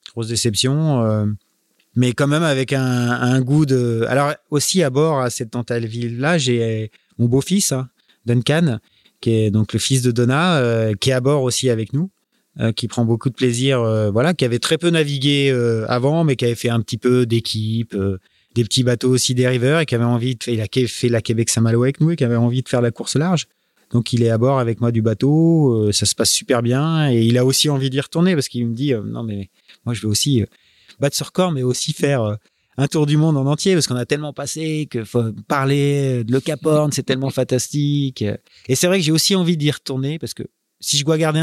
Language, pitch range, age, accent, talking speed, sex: French, 115-145 Hz, 30-49, French, 240 wpm, male